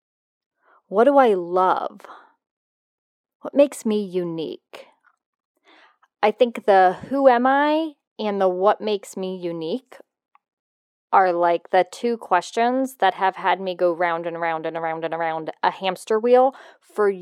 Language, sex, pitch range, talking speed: English, female, 185-285 Hz, 145 wpm